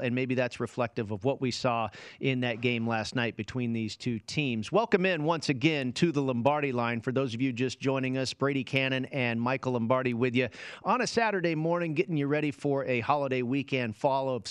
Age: 40-59